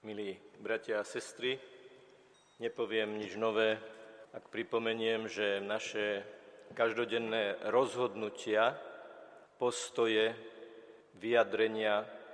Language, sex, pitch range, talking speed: Slovak, male, 110-155 Hz, 75 wpm